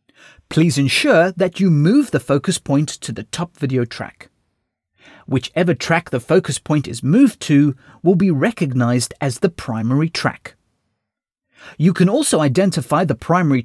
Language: English